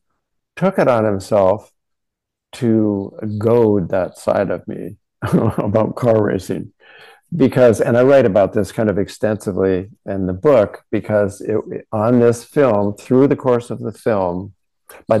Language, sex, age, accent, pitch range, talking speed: English, male, 50-69, American, 105-135 Hz, 140 wpm